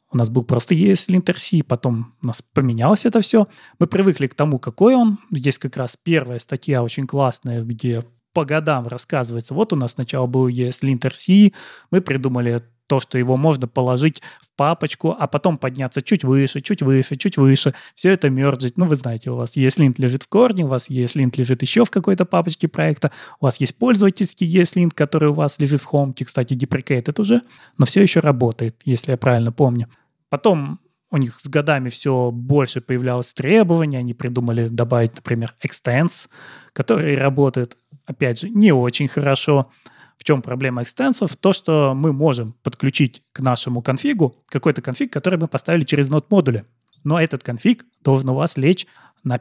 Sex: male